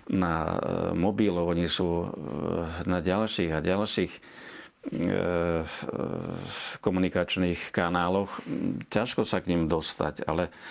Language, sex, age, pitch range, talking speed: Slovak, male, 50-69, 85-95 Hz, 90 wpm